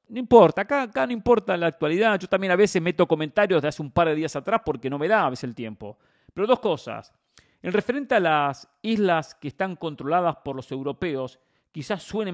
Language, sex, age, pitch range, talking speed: English, male, 40-59, 135-180 Hz, 220 wpm